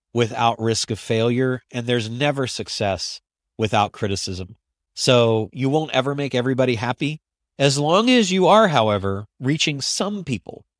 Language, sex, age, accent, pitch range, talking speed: English, male, 40-59, American, 110-145 Hz, 145 wpm